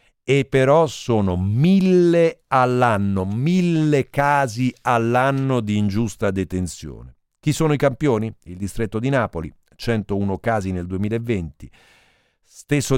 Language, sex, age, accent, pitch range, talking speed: Italian, male, 50-69, native, 105-130 Hz, 110 wpm